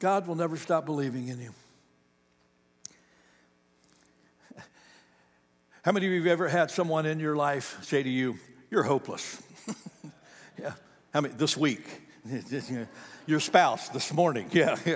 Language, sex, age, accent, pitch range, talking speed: English, male, 60-79, American, 120-155 Hz, 135 wpm